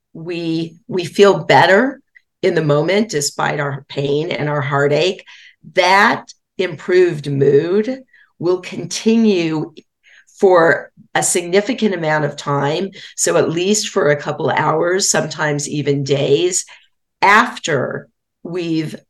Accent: American